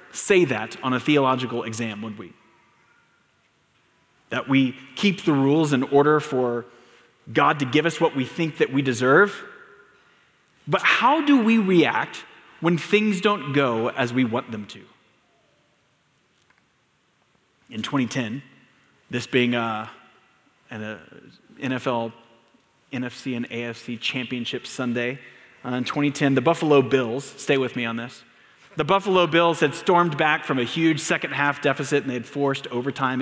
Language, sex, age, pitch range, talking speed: English, male, 30-49, 120-155 Hz, 140 wpm